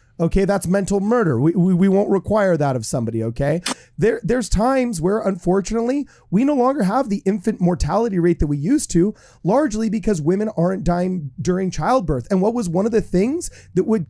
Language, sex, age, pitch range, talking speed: English, male, 30-49, 165-215 Hz, 195 wpm